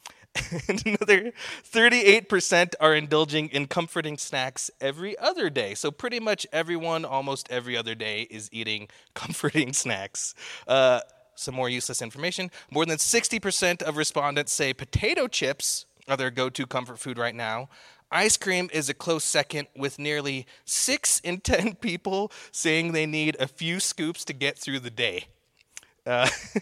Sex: male